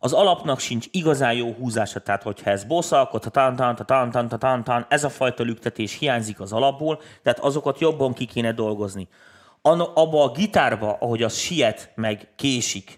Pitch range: 110-140 Hz